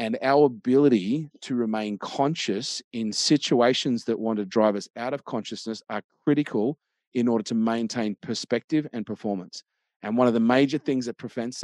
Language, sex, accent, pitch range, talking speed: English, male, Australian, 110-130 Hz, 170 wpm